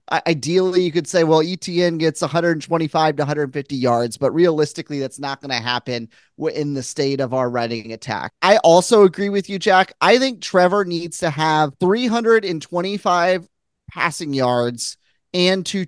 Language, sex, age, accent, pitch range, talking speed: English, male, 30-49, American, 145-175 Hz, 160 wpm